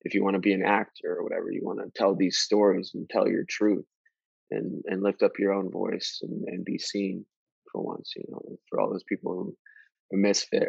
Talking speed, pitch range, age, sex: 230 wpm, 95-115 Hz, 20-39, male